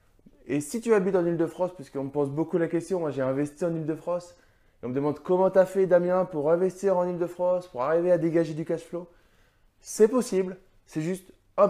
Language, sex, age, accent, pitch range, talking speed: French, male, 20-39, French, 135-180 Hz, 215 wpm